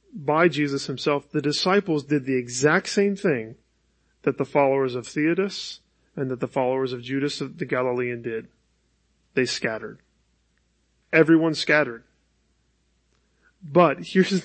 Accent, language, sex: American, English, male